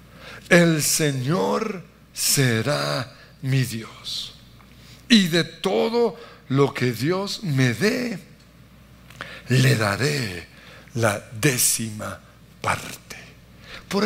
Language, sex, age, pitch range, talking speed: Spanish, male, 60-79, 145-200 Hz, 80 wpm